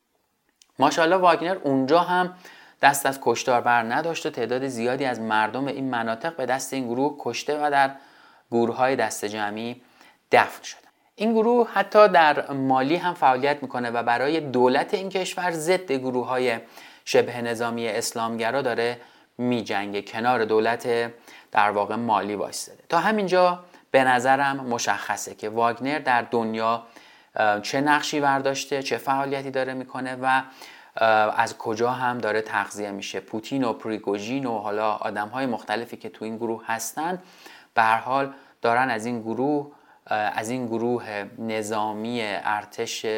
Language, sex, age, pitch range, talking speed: Persian, male, 30-49, 115-140 Hz, 140 wpm